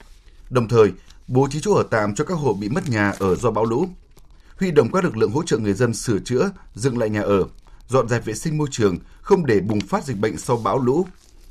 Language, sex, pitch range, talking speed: Vietnamese, male, 100-140 Hz, 245 wpm